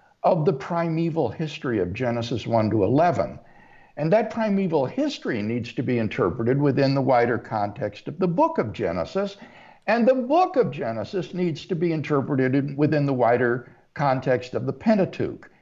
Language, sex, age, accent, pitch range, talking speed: English, male, 60-79, American, 130-185 Hz, 160 wpm